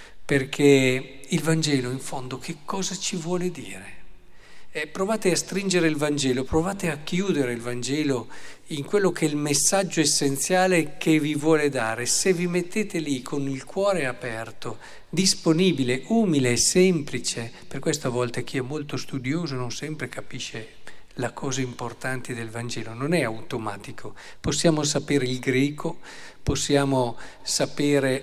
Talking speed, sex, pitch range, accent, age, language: 145 wpm, male, 125-165 Hz, native, 50-69, Italian